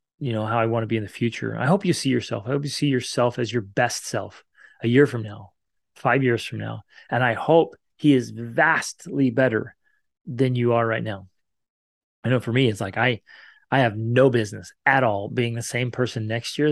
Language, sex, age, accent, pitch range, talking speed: English, male, 30-49, American, 110-130 Hz, 225 wpm